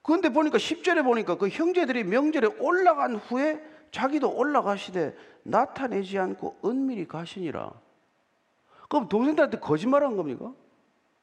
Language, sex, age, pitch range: Korean, male, 40-59, 185-285 Hz